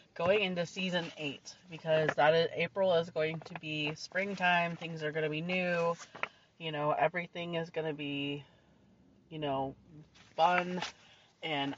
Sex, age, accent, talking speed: female, 30-49, American, 155 wpm